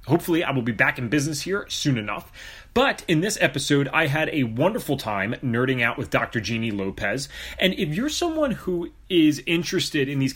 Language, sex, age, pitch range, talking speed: English, male, 30-49, 120-155 Hz, 195 wpm